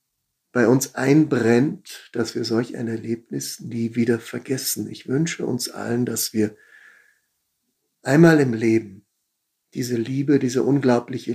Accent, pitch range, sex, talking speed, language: German, 115-150 Hz, male, 125 wpm, German